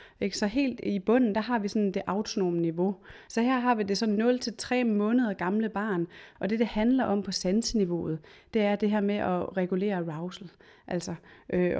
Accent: native